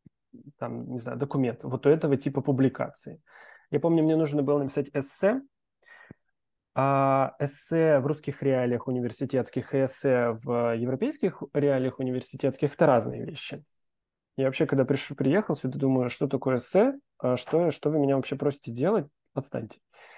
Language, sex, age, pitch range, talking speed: Russian, male, 20-39, 130-160 Hz, 145 wpm